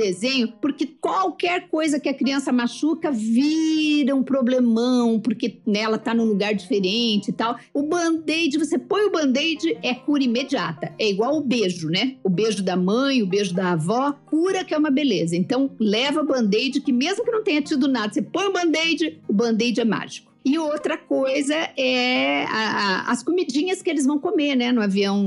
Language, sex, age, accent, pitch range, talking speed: Portuguese, female, 50-69, Brazilian, 215-290 Hz, 190 wpm